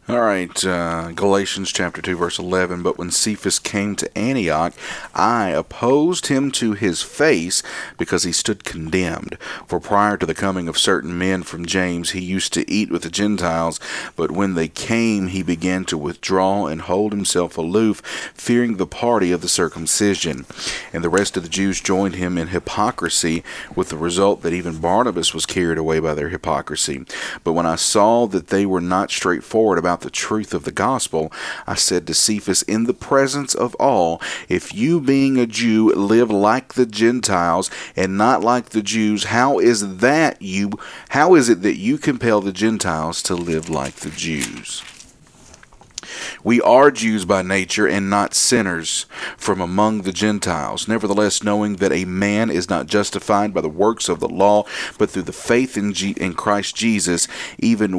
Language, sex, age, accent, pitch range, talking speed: English, male, 40-59, American, 85-105 Hz, 175 wpm